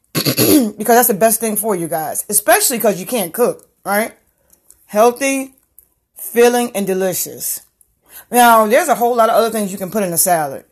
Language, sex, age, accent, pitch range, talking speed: English, female, 30-49, American, 200-250 Hz, 185 wpm